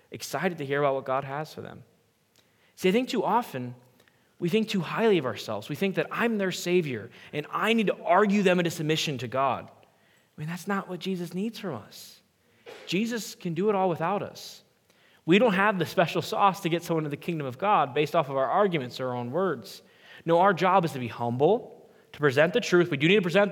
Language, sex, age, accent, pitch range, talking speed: English, male, 20-39, American, 140-185 Hz, 230 wpm